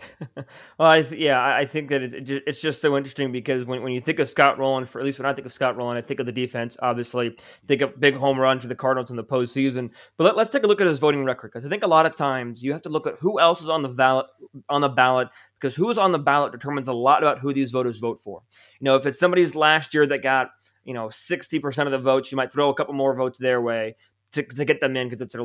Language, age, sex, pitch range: English, 20-39, male, 125-150 Hz